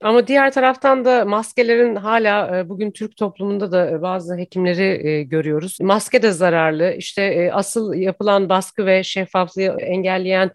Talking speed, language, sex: 130 wpm, Turkish, female